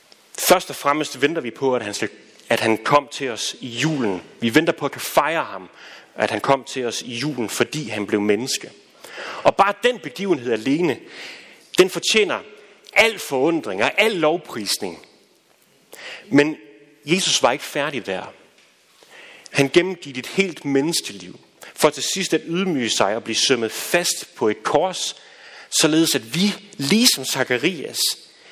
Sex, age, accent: male, 30-49, native